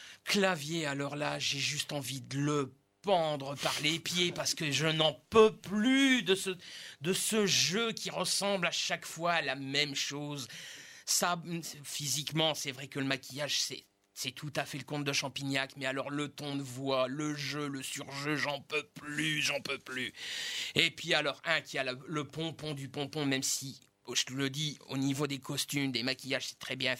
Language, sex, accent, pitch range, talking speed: French, male, French, 135-165 Hz, 200 wpm